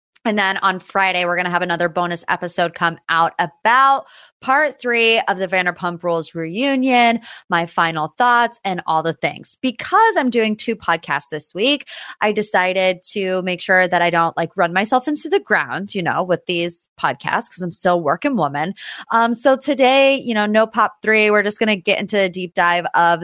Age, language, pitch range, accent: 20-39, English, 175-240 Hz, American